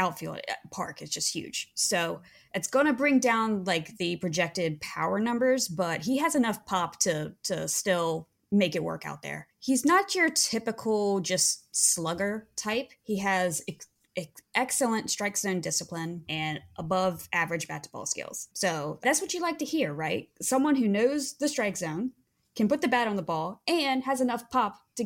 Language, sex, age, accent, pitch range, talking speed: English, female, 20-39, American, 170-240 Hz, 185 wpm